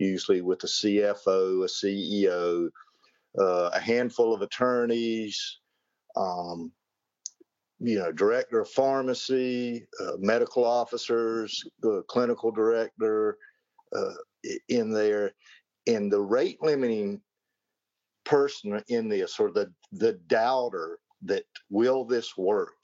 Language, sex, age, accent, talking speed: English, male, 50-69, American, 110 wpm